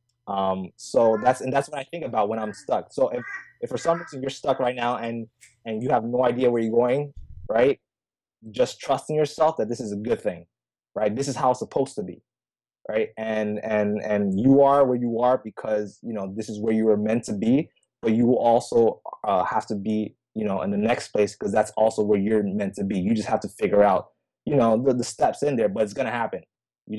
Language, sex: English, male